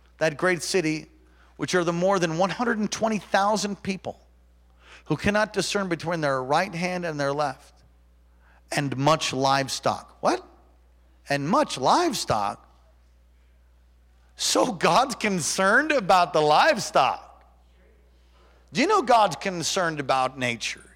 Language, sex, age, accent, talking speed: English, male, 40-59, American, 115 wpm